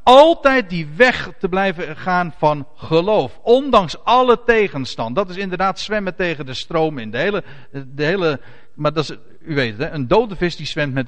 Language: Dutch